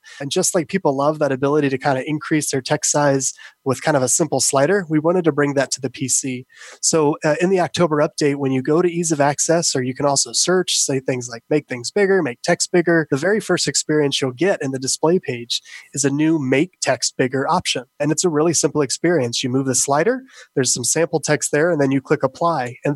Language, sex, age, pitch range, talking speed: English, male, 20-39, 135-170 Hz, 245 wpm